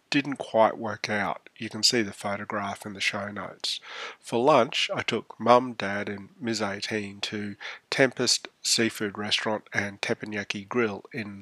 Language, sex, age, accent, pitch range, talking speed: English, male, 30-49, Australian, 100-115 Hz, 160 wpm